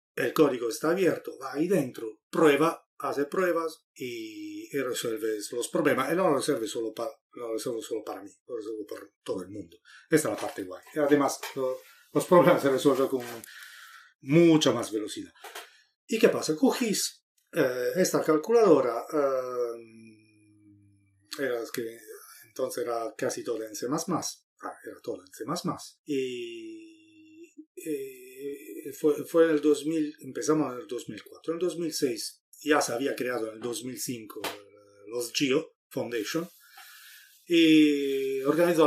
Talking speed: 145 wpm